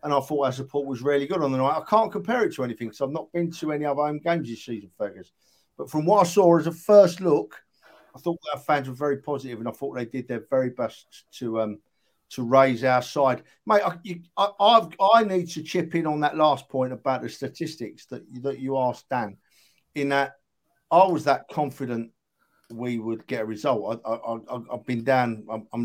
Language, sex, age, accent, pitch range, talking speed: English, male, 50-69, British, 120-160 Hz, 235 wpm